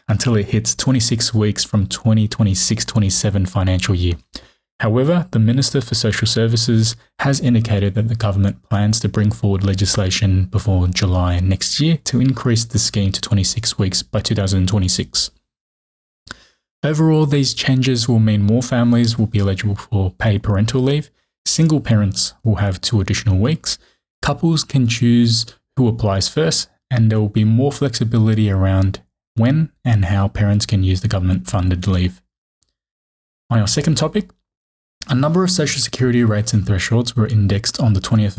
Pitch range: 100-120 Hz